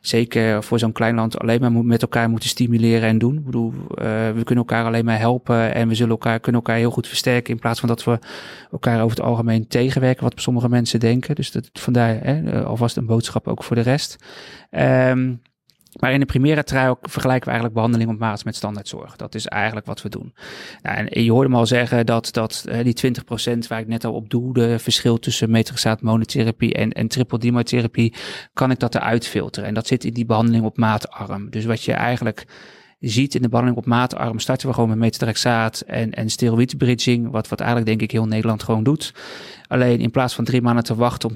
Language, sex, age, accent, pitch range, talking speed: Dutch, male, 30-49, Dutch, 110-120 Hz, 220 wpm